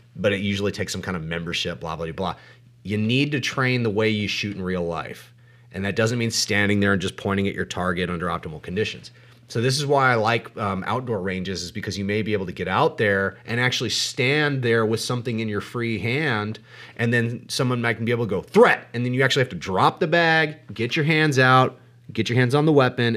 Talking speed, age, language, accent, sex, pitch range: 245 wpm, 30-49, English, American, male, 100-130 Hz